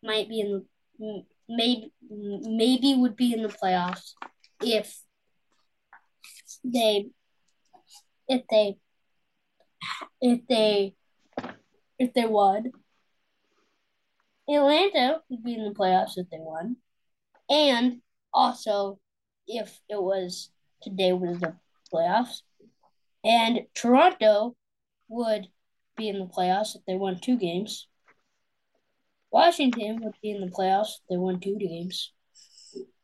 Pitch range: 200-250 Hz